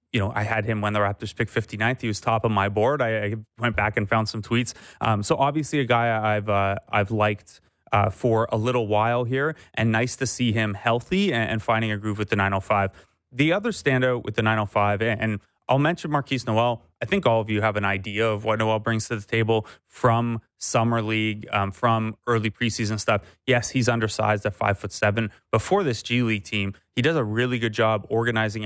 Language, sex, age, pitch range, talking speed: English, male, 30-49, 105-130 Hz, 220 wpm